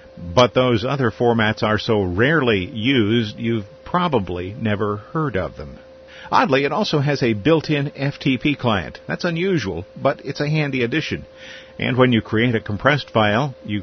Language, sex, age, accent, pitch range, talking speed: English, male, 50-69, American, 105-140 Hz, 160 wpm